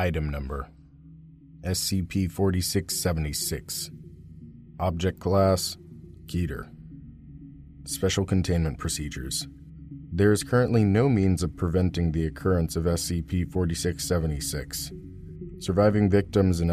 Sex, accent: male, American